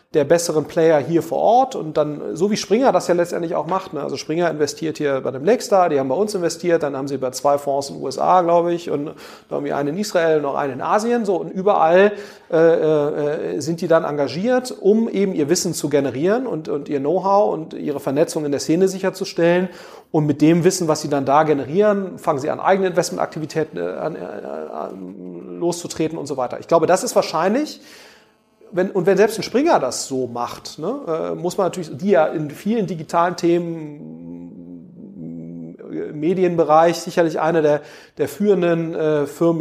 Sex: male